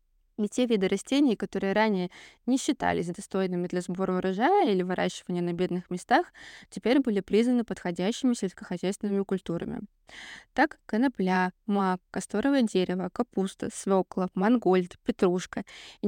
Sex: female